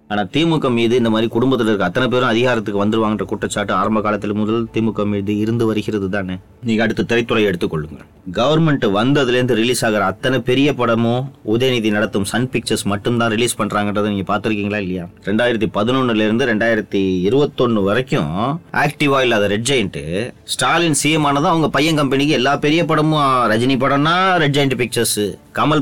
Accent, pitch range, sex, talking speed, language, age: native, 105-130 Hz, male, 60 wpm, Tamil, 30-49